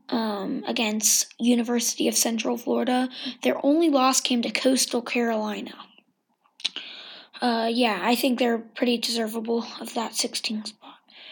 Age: 20-39